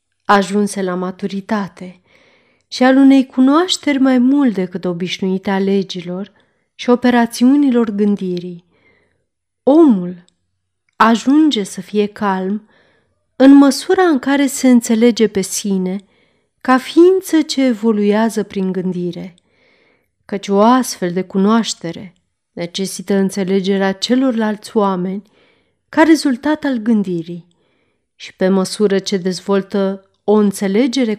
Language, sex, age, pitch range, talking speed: Romanian, female, 30-49, 185-245 Hz, 105 wpm